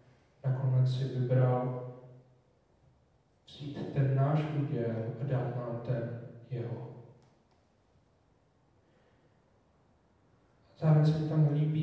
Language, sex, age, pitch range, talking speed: Czech, male, 40-59, 130-150 Hz, 85 wpm